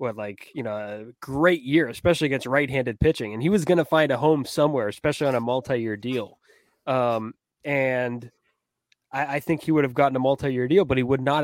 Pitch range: 115-140 Hz